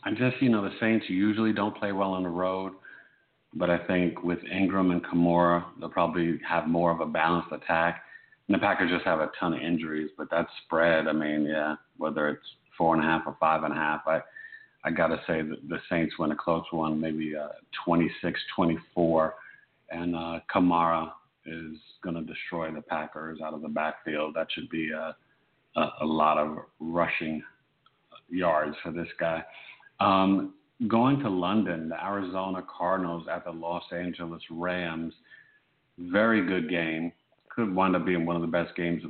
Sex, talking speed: male, 185 wpm